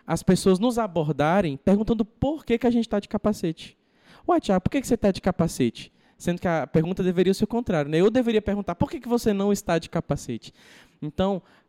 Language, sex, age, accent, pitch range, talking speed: Portuguese, male, 20-39, Brazilian, 155-200 Hz, 220 wpm